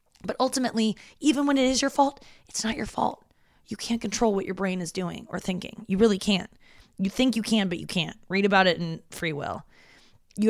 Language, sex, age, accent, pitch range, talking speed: English, female, 20-39, American, 175-225 Hz, 225 wpm